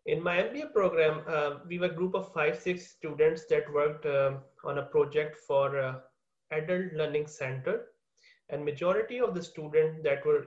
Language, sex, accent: English, male, Indian